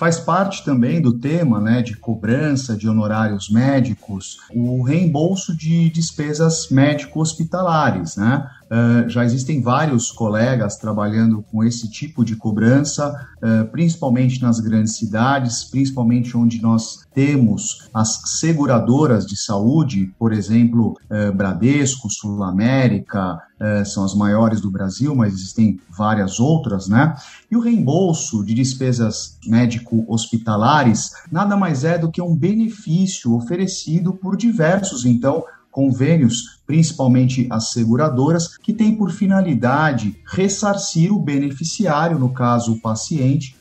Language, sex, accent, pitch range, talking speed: Portuguese, male, Brazilian, 115-165 Hz, 115 wpm